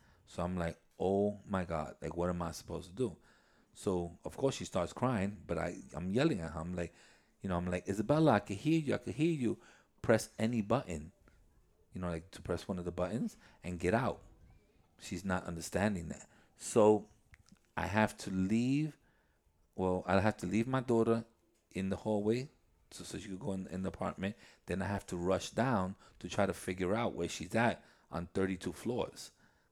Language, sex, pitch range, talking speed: English, male, 85-105 Hz, 200 wpm